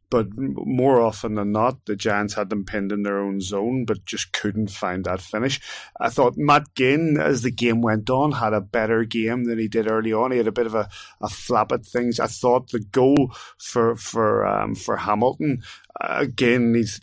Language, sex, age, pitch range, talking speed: English, male, 30-49, 105-125 Hz, 215 wpm